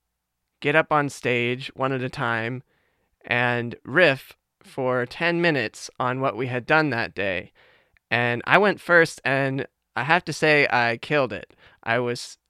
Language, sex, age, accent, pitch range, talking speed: English, male, 20-39, American, 115-135 Hz, 165 wpm